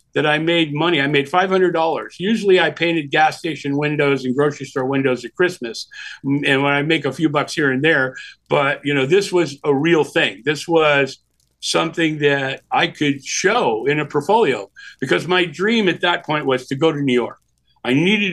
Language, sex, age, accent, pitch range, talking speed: English, male, 50-69, American, 135-170 Hz, 200 wpm